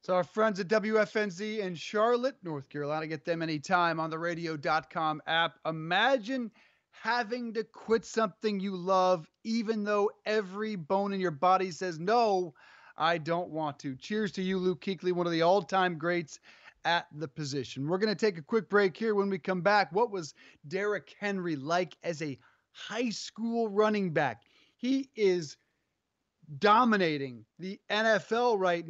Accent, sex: American, male